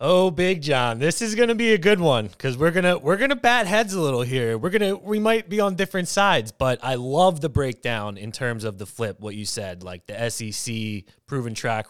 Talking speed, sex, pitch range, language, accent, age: 230 wpm, male, 110-155 Hz, English, American, 20-39